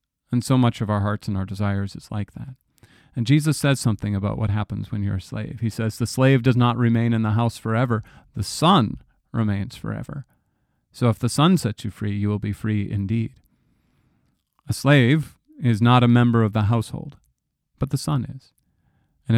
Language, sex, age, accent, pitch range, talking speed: English, male, 40-59, American, 105-125 Hz, 200 wpm